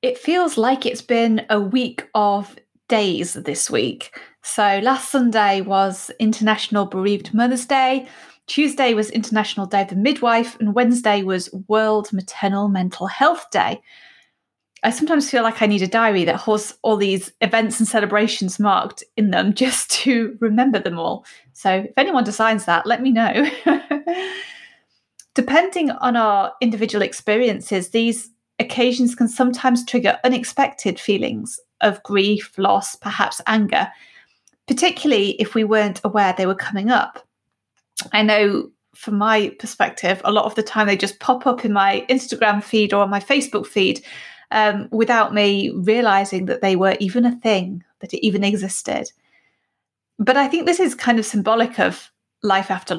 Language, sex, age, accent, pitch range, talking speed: English, female, 30-49, British, 205-250 Hz, 155 wpm